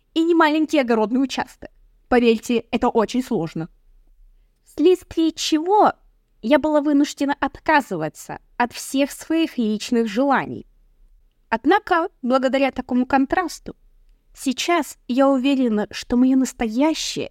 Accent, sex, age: native, female, 20-39